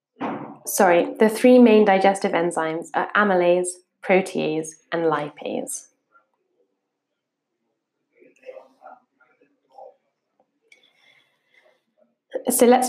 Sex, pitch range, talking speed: female, 180-225 Hz, 60 wpm